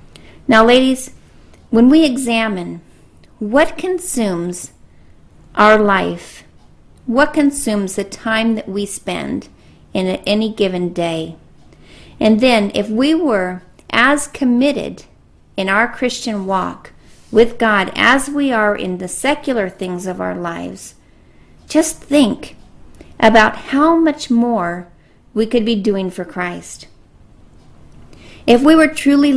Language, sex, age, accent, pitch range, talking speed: English, female, 40-59, American, 190-250 Hz, 120 wpm